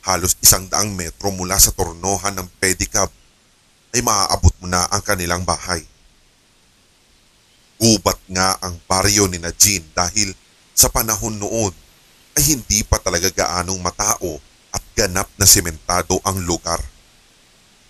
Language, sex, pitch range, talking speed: Filipino, male, 90-105 Hz, 125 wpm